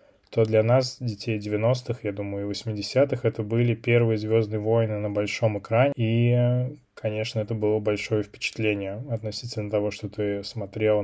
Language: Russian